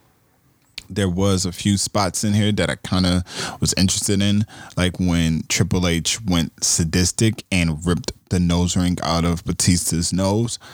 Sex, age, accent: male, 20-39, American